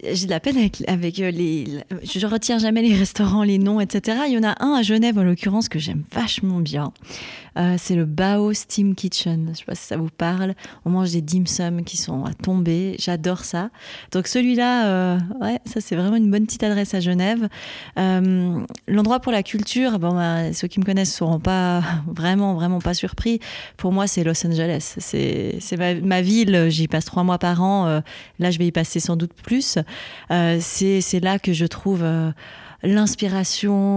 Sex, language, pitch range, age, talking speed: female, French, 170-200 Hz, 30-49, 205 wpm